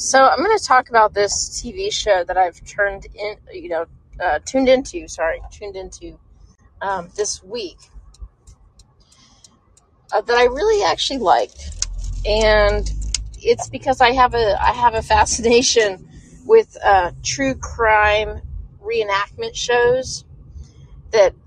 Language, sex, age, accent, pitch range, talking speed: English, female, 30-49, American, 195-305 Hz, 130 wpm